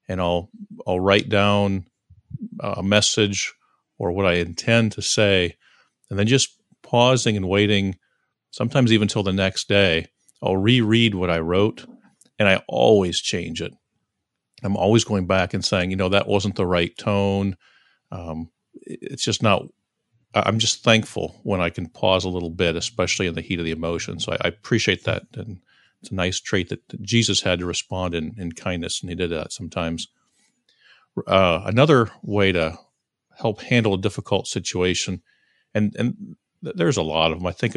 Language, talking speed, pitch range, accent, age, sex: English, 175 wpm, 90-110 Hz, American, 50-69, male